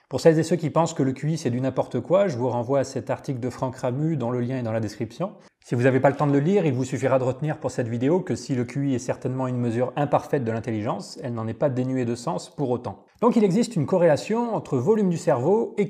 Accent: French